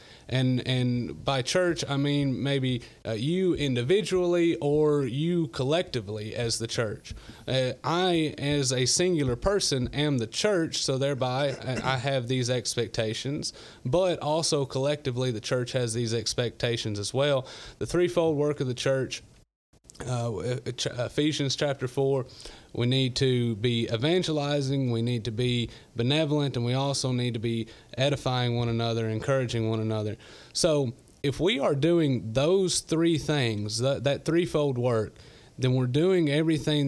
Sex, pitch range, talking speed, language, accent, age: male, 115-145 Hz, 145 wpm, English, American, 30-49